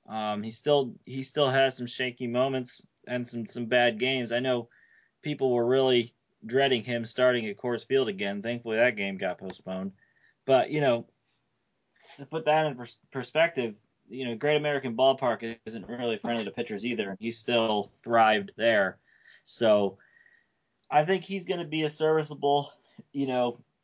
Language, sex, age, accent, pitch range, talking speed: English, male, 20-39, American, 115-135 Hz, 165 wpm